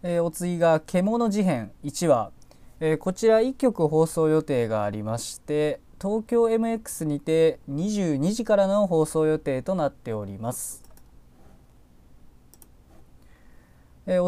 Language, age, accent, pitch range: Japanese, 20-39, native, 120-190 Hz